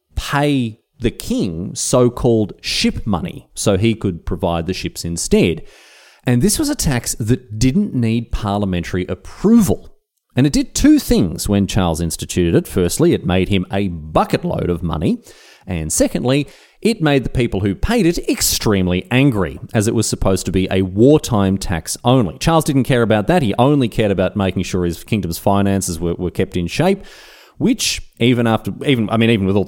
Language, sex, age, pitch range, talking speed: English, male, 30-49, 95-140 Hz, 180 wpm